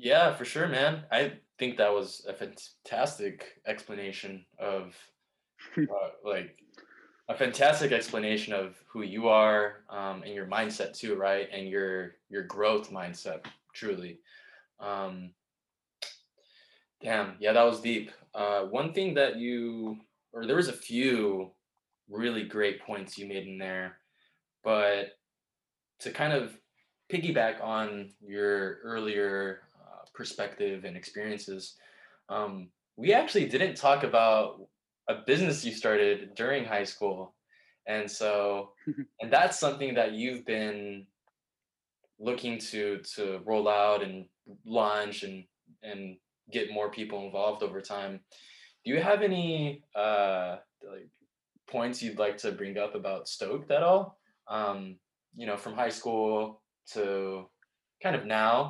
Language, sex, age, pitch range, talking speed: English, male, 20-39, 100-115 Hz, 130 wpm